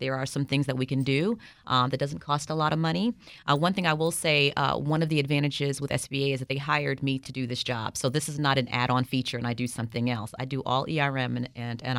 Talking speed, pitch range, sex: 285 wpm, 125-155 Hz, female